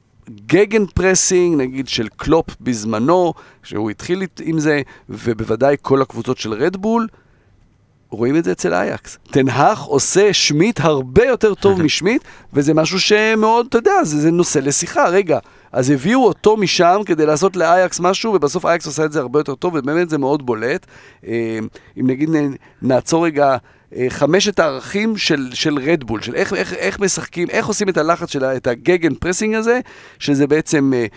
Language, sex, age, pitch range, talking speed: Hebrew, male, 40-59, 125-170 Hz, 160 wpm